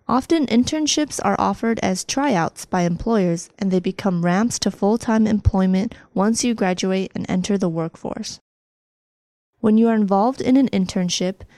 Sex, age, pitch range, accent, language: female, 20-39, 185-230 Hz, American, Chinese